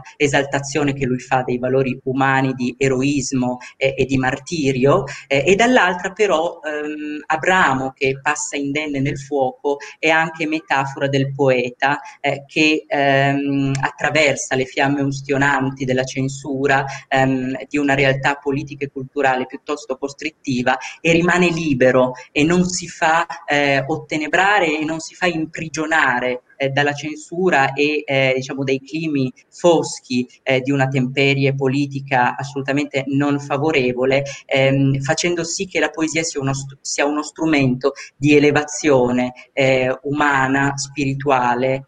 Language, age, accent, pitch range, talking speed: Italian, 30-49, native, 135-150 Hz, 135 wpm